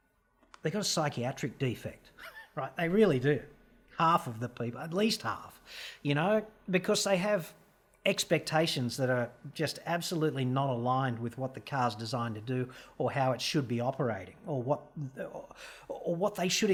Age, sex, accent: 40-59, male, Australian